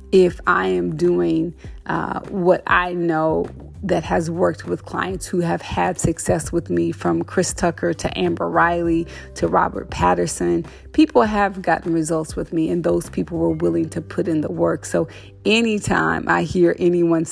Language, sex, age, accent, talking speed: English, female, 30-49, American, 170 wpm